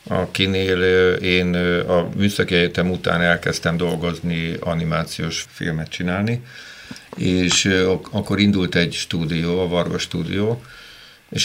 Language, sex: Hungarian, male